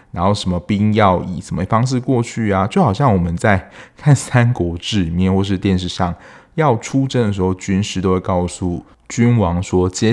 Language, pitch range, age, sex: Chinese, 90-110 Hz, 20-39, male